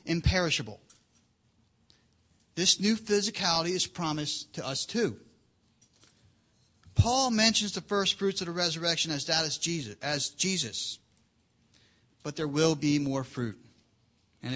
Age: 40-59